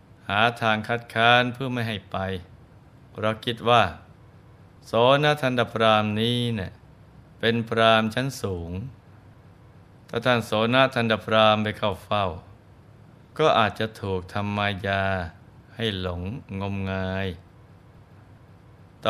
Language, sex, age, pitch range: Thai, male, 20-39, 100-120 Hz